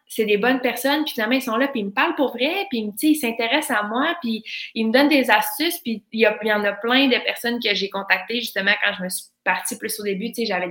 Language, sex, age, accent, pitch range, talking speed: French, female, 20-39, Canadian, 200-245 Hz, 280 wpm